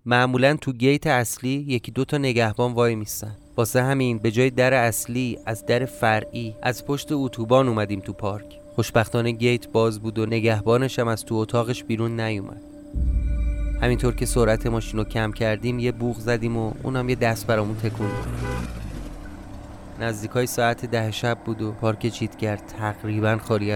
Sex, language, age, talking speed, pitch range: male, Persian, 30-49, 155 wpm, 110-125 Hz